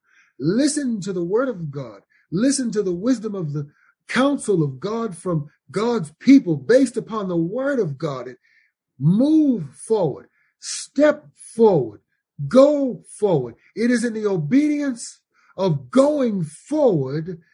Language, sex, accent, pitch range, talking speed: English, male, American, 145-210 Hz, 130 wpm